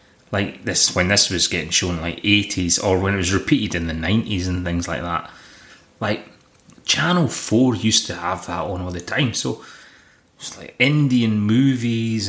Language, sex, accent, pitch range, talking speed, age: English, male, British, 100-160 Hz, 180 wpm, 30-49